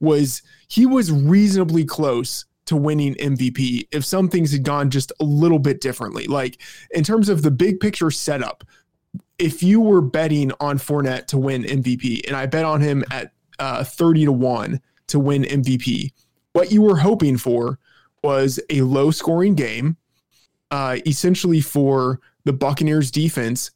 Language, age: English, 20-39